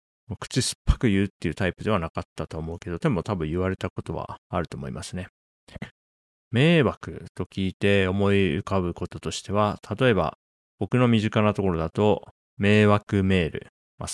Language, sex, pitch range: Japanese, male, 85-105 Hz